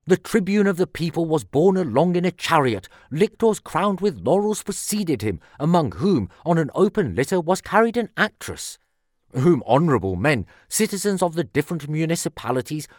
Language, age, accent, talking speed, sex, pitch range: English, 40-59, British, 160 wpm, male, 125-185 Hz